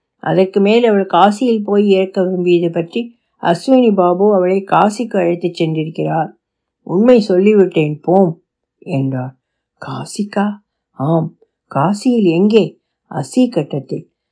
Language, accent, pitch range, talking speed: Tamil, native, 170-215 Hz, 100 wpm